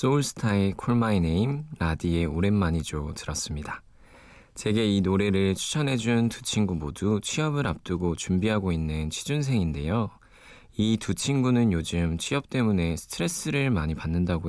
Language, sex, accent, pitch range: Korean, male, native, 85-115 Hz